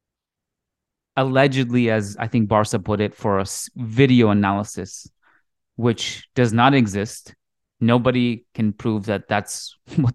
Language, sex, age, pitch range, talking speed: English, male, 20-39, 105-130 Hz, 125 wpm